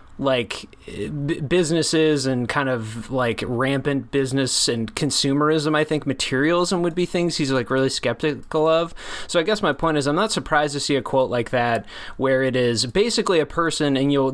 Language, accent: English, American